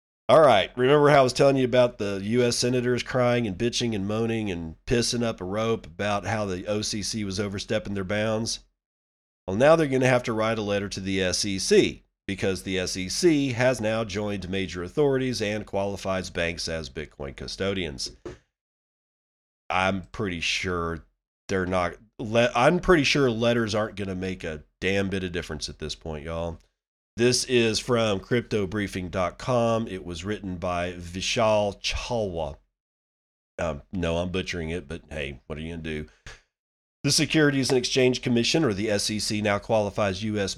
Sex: male